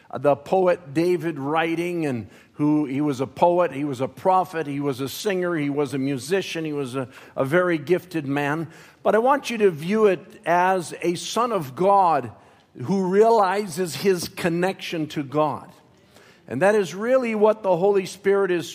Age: 50-69